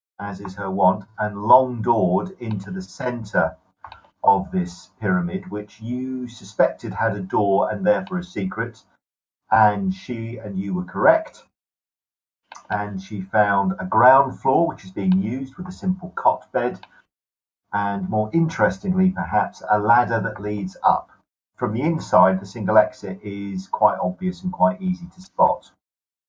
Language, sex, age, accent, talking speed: English, male, 50-69, British, 155 wpm